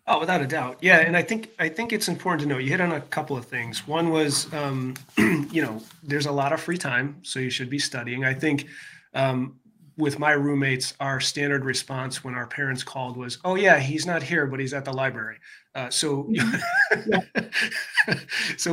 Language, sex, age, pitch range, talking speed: English, male, 30-49, 130-165 Hz, 205 wpm